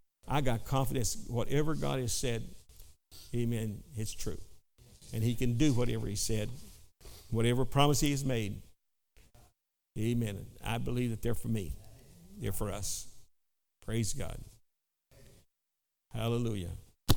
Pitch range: 110-130 Hz